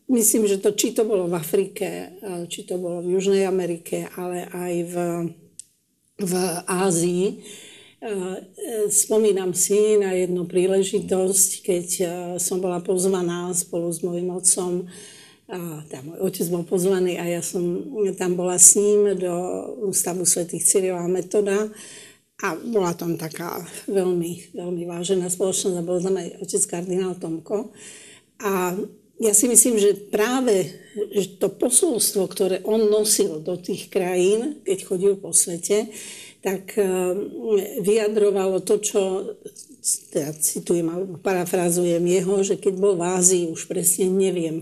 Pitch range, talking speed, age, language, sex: 180-205 Hz, 135 wpm, 50-69, Slovak, female